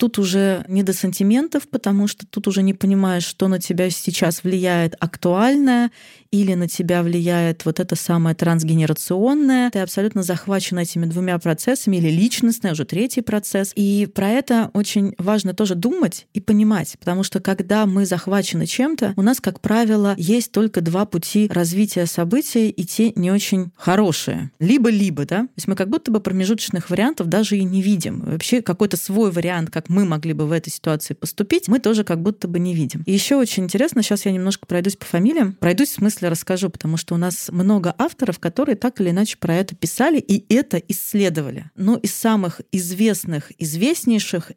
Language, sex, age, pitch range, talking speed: Russian, female, 20-39, 175-215 Hz, 180 wpm